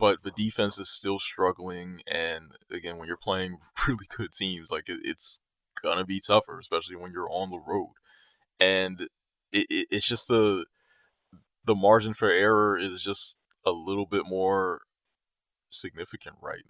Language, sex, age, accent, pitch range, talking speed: English, male, 20-39, American, 95-130 Hz, 160 wpm